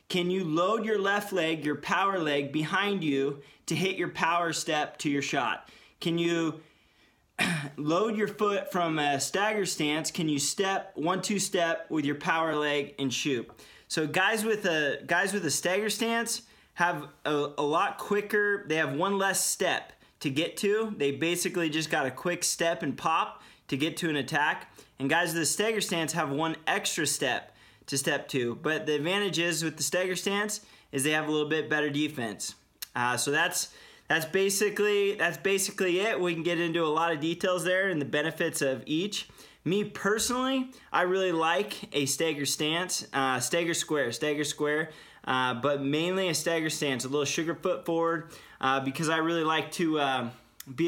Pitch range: 145-185 Hz